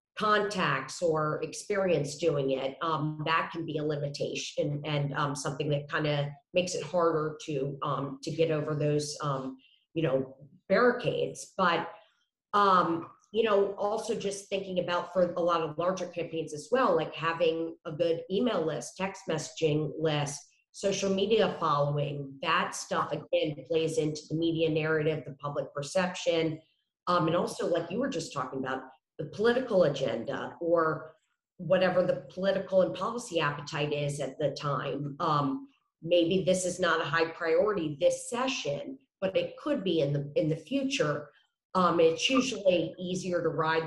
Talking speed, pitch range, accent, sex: 155 wpm, 150-185 Hz, American, female